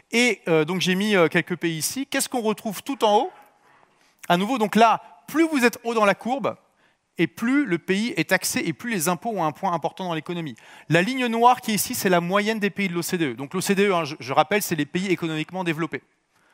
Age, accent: 30-49, French